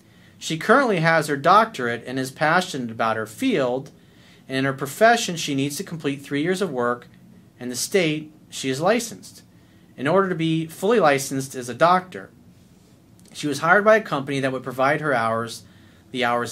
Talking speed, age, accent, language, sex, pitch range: 185 wpm, 40-59, American, English, male, 125-160 Hz